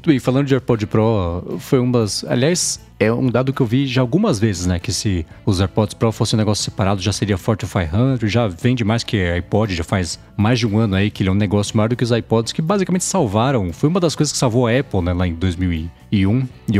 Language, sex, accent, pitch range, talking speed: Portuguese, male, Brazilian, 105-145 Hz, 250 wpm